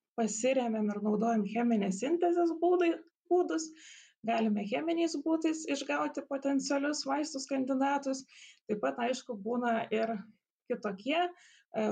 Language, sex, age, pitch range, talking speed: English, female, 20-39, 215-275 Hz, 100 wpm